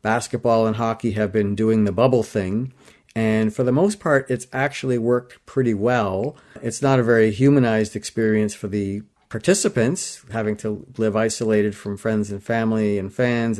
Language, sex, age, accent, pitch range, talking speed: English, male, 50-69, American, 110-130 Hz, 170 wpm